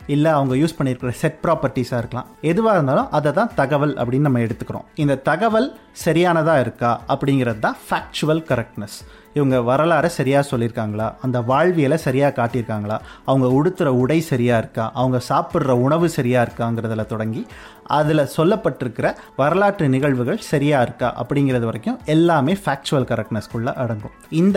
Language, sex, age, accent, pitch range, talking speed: Tamil, male, 30-49, native, 125-180 Hz, 135 wpm